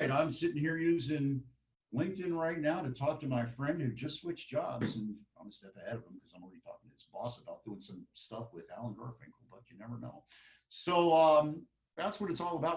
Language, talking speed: English, 225 wpm